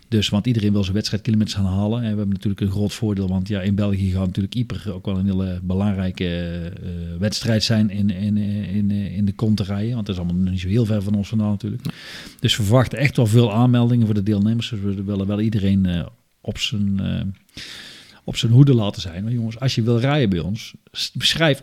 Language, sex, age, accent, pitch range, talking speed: Dutch, male, 50-69, Dutch, 100-125 Hz, 220 wpm